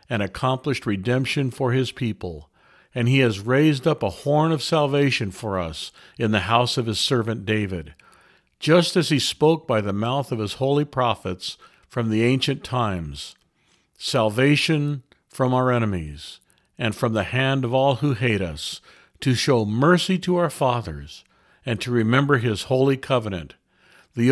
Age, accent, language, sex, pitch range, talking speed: 50-69, American, English, male, 105-135 Hz, 160 wpm